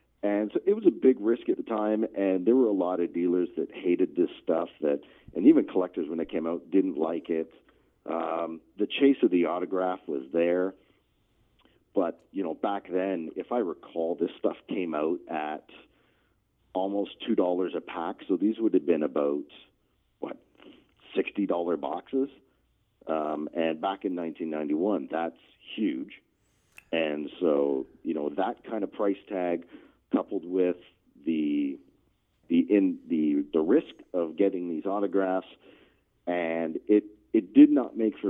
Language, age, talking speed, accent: English, 40-59, 160 wpm, American